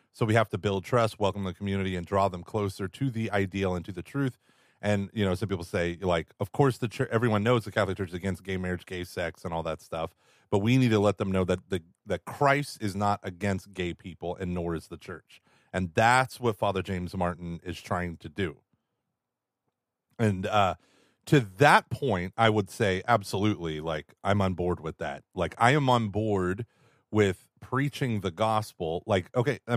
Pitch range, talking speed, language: 95-120 Hz, 210 wpm, English